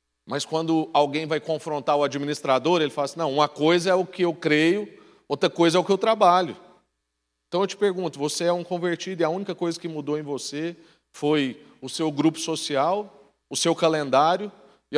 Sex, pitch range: male, 110-150 Hz